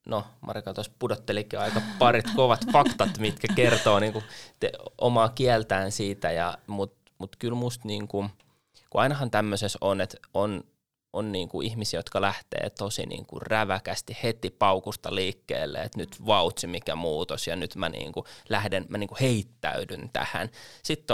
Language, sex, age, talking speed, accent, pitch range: Finnish, male, 20-39, 145 wpm, native, 100-120 Hz